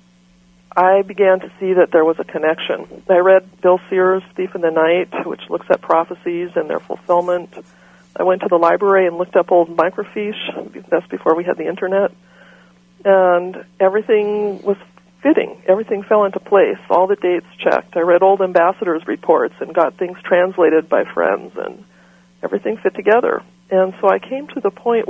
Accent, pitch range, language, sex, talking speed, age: American, 170-190 Hz, English, female, 175 wpm, 50-69